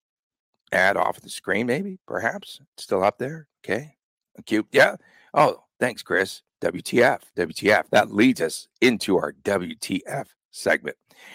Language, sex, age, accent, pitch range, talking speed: English, male, 50-69, American, 105-130 Hz, 130 wpm